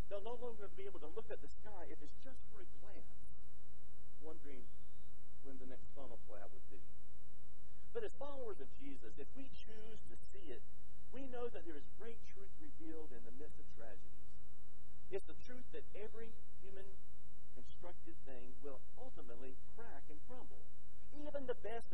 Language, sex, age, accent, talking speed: English, male, 50-69, American, 175 wpm